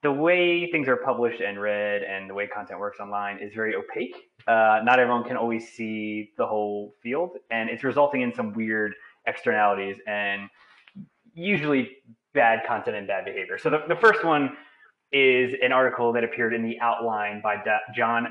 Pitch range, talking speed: 105-140 Hz, 175 wpm